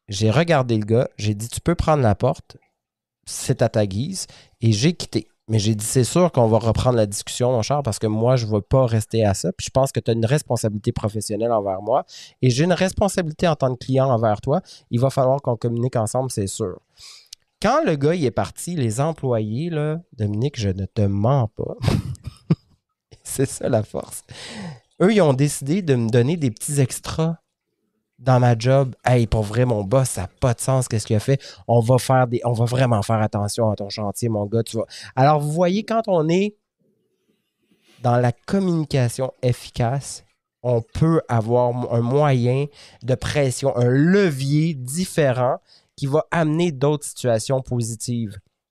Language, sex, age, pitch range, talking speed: French, male, 30-49, 110-145 Hz, 195 wpm